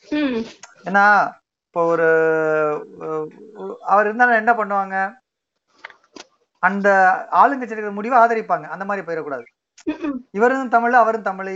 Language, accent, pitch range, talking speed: Tamil, native, 180-235 Hz, 90 wpm